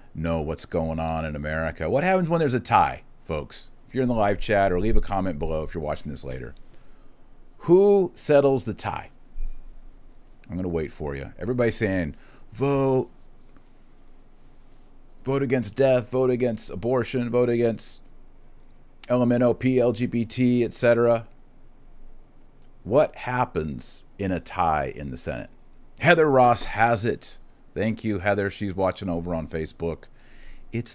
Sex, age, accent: male, 40-59, American